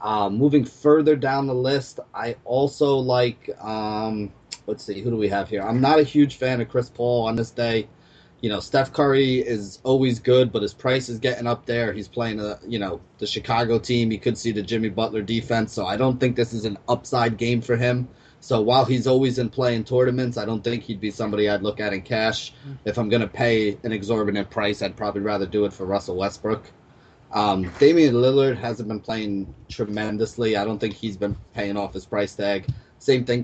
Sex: male